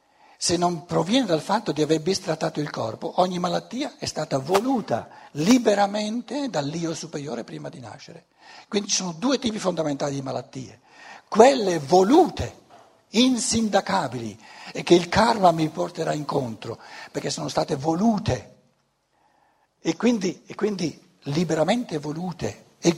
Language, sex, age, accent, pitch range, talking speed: Italian, male, 60-79, native, 155-225 Hz, 130 wpm